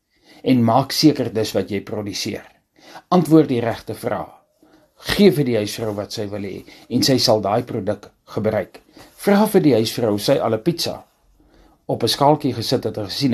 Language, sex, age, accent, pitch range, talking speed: English, male, 50-69, Dutch, 105-145 Hz, 165 wpm